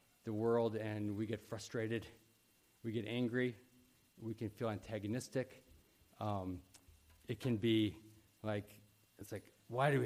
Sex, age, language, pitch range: male, 40-59, English, 105-125 Hz